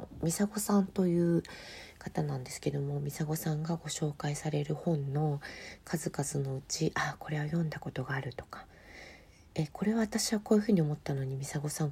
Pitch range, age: 135-165 Hz, 40-59